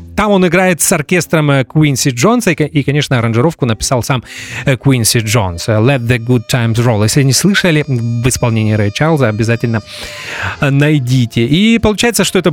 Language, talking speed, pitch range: English, 150 wpm, 120-170 Hz